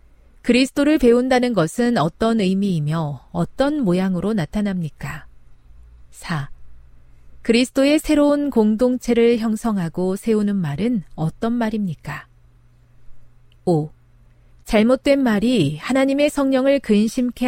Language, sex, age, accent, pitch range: Korean, female, 40-59, native, 155-235 Hz